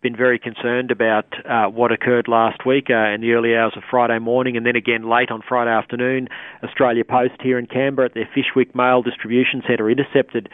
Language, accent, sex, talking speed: English, Australian, male, 205 wpm